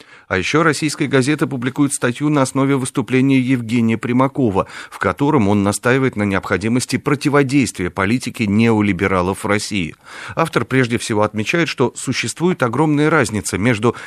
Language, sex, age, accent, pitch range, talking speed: Russian, male, 40-59, native, 100-135 Hz, 130 wpm